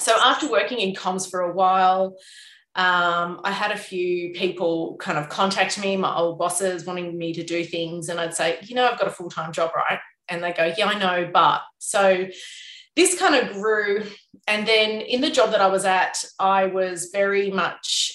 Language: English